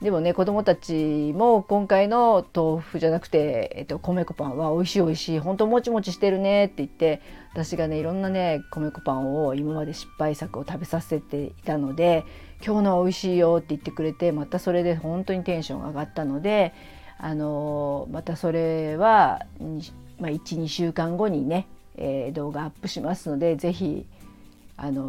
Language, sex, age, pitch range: Japanese, female, 50-69, 150-180 Hz